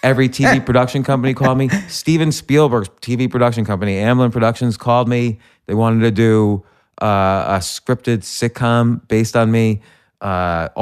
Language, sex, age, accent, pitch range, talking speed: English, male, 30-49, American, 100-120 Hz, 150 wpm